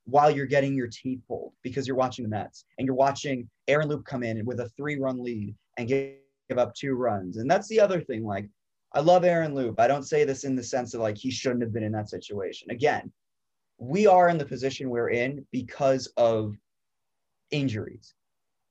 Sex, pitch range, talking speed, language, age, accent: male, 120-150 Hz, 210 wpm, English, 20-39, American